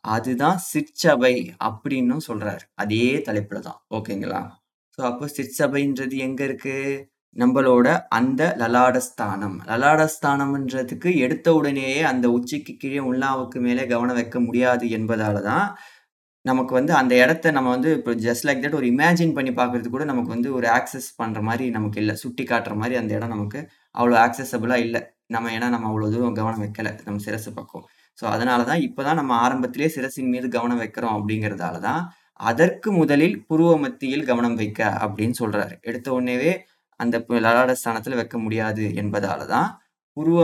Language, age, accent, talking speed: Tamil, 20-39, native, 140 wpm